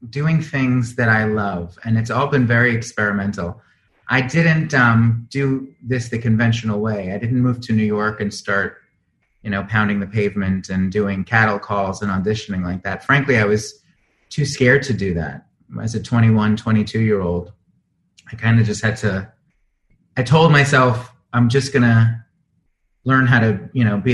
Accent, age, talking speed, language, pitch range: American, 30-49, 175 wpm, English, 105-135 Hz